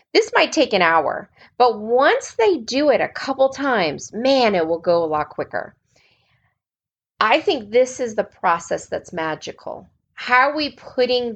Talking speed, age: 170 wpm, 30-49